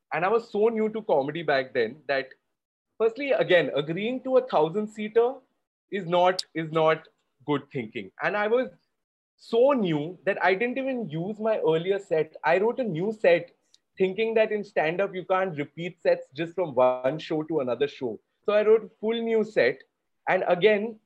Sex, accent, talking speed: male, Indian, 185 wpm